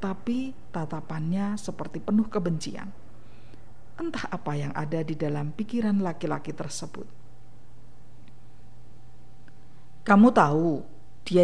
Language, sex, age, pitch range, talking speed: Indonesian, female, 50-69, 130-200 Hz, 90 wpm